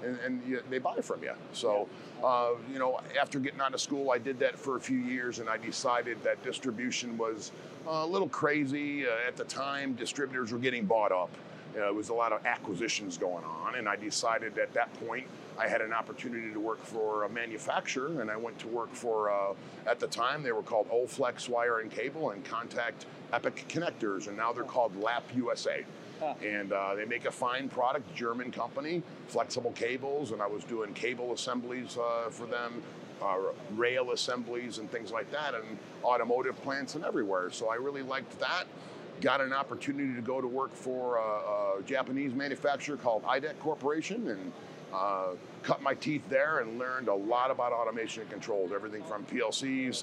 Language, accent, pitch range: English, American, 115-135 Hz